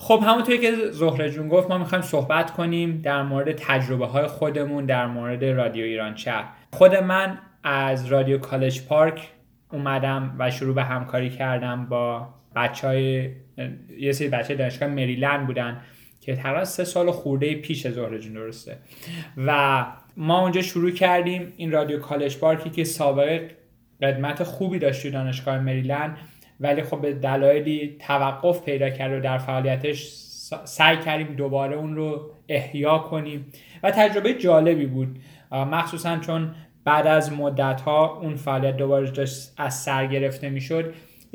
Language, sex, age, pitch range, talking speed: Persian, male, 10-29, 135-160 Hz, 145 wpm